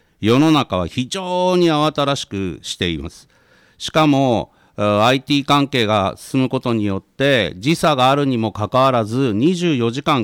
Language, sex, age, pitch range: Japanese, male, 50-69, 110-170 Hz